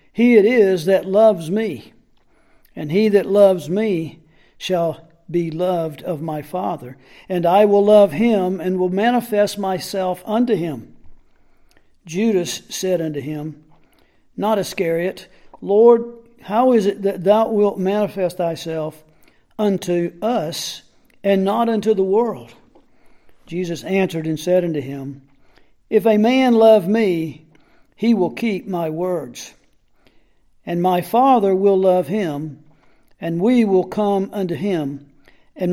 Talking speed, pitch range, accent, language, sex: 135 wpm, 165-210 Hz, American, English, male